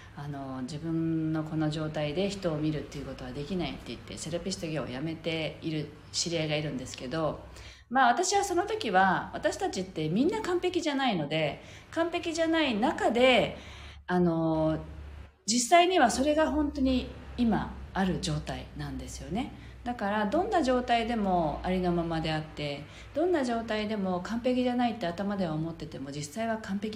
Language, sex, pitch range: Japanese, female, 155-245 Hz